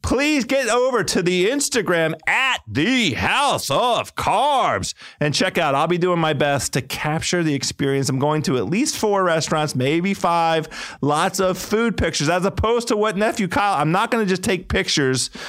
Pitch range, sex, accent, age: 135-195 Hz, male, American, 40-59